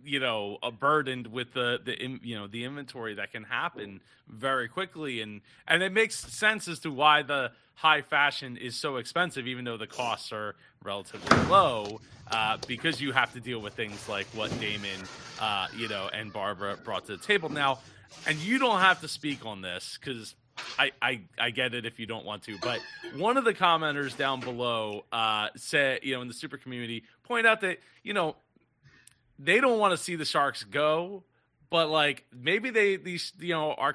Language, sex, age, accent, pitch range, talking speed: English, male, 30-49, American, 120-175 Hz, 200 wpm